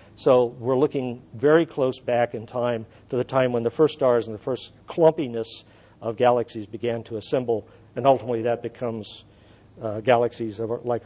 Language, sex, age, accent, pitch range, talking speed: English, male, 50-69, American, 110-145 Hz, 180 wpm